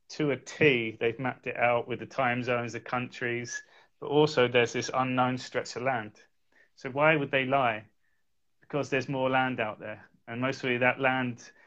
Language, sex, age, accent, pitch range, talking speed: English, male, 30-49, British, 120-140 Hz, 185 wpm